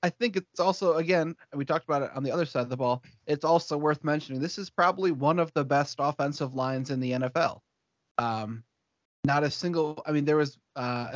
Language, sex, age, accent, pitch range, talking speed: English, male, 30-49, American, 120-150 Hz, 220 wpm